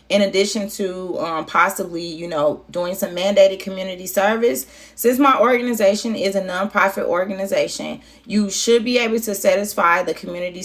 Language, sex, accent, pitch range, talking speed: English, female, American, 175-230 Hz, 150 wpm